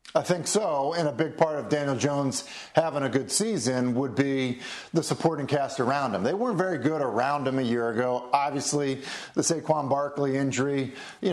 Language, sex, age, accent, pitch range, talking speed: English, male, 40-59, American, 140-165 Hz, 190 wpm